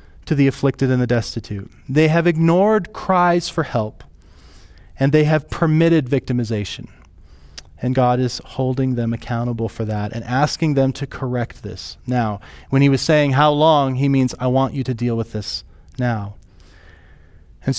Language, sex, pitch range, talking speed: English, male, 115-160 Hz, 165 wpm